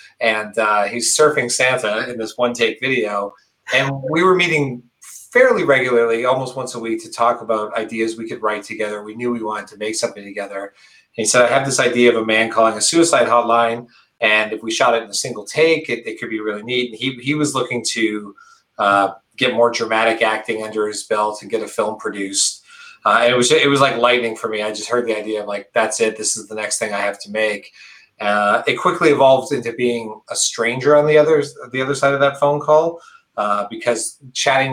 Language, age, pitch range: English, 30-49, 110-130 Hz